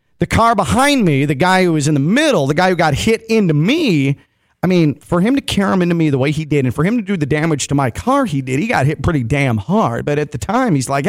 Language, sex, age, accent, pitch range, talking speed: English, male, 40-59, American, 125-170 Hz, 300 wpm